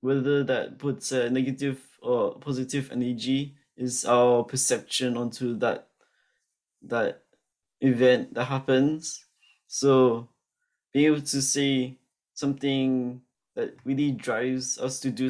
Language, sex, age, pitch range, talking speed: English, male, 20-39, 130-140 Hz, 115 wpm